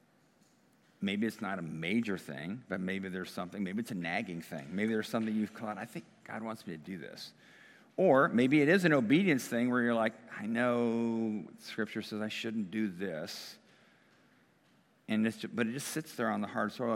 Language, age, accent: English, 50-69, American